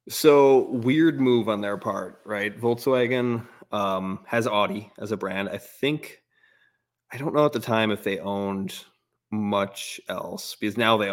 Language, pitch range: English, 100-115 Hz